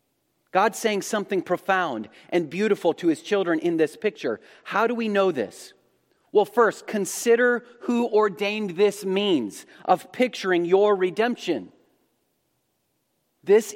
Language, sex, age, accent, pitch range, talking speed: English, male, 40-59, American, 170-225 Hz, 125 wpm